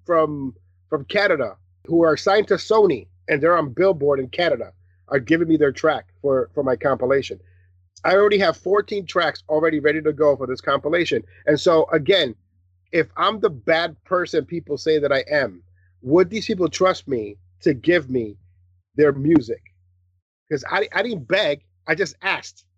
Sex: male